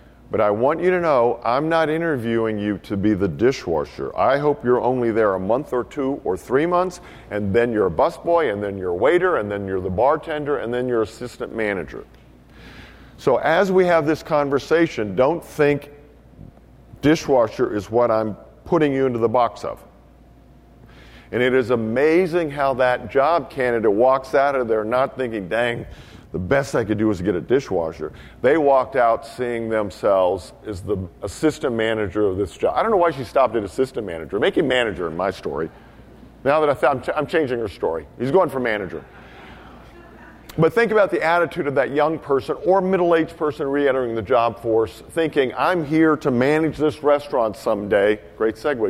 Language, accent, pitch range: English, American, 105-150 Hz